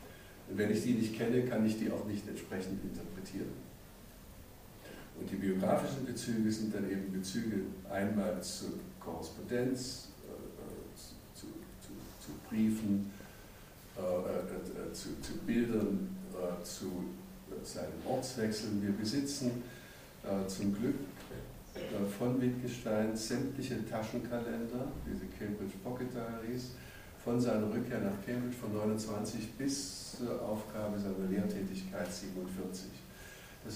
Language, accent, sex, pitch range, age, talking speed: German, German, male, 100-120 Hz, 60-79, 115 wpm